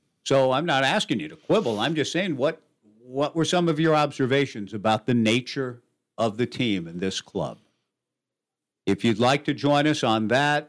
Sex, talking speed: male, 190 wpm